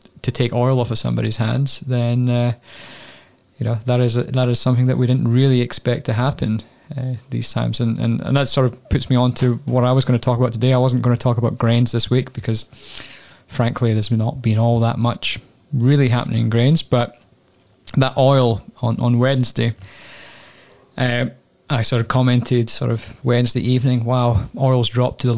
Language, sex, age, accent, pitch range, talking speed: English, male, 20-39, British, 120-130 Hz, 205 wpm